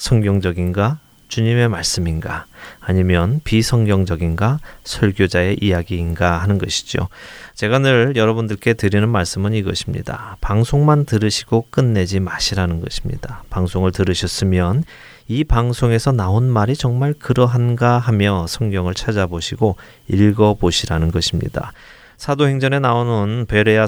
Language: Korean